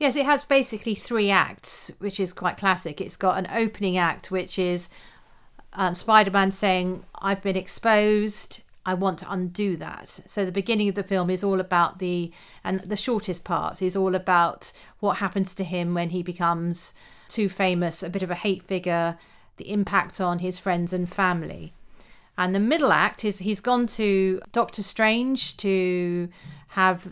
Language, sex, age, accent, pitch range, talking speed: English, female, 40-59, British, 180-205 Hz, 175 wpm